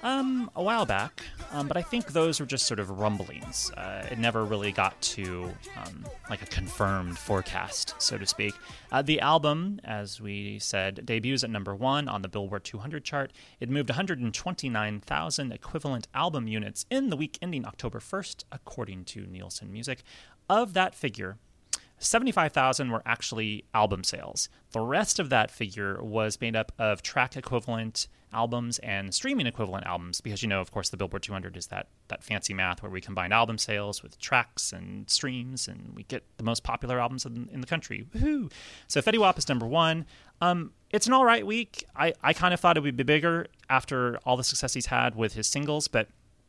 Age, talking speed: 30-49, 185 wpm